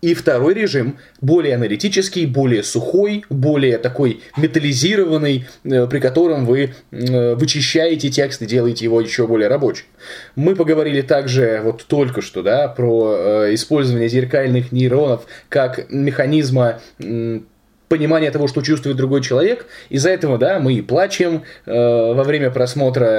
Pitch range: 125-160 Hz